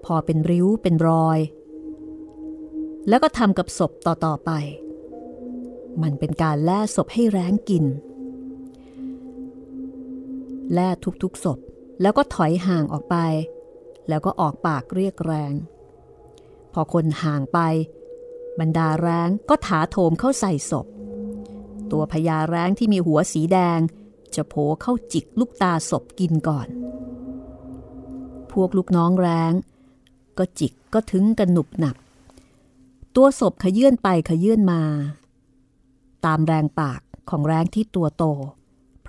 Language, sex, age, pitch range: Thai, female, 30-49, 155-255 Hz